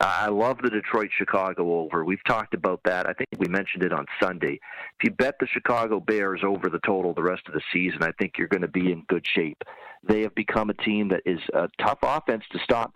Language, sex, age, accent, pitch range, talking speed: English, male, 40-59, American, 95-115 Hz, 235 wpm